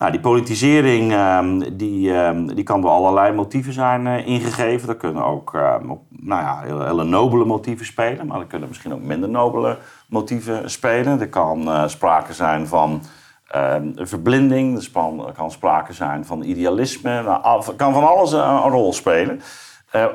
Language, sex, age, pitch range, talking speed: Dutch, male, 40-59, 95-125 Hz, 150 wpm